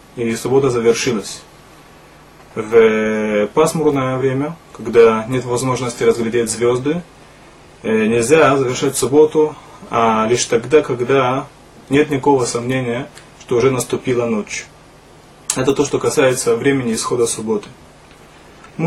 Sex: male